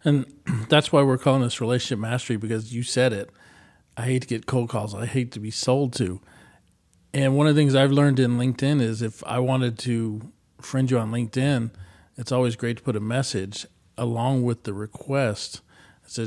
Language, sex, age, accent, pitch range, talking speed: English, male, 40-59, American, 110-130 Hz, 200 wpm